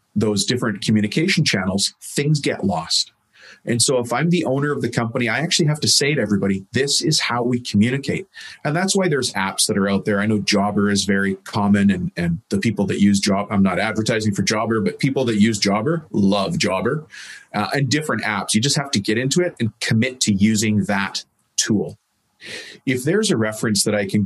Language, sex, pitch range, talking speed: English, male, 105-130 Hz, 215 wpm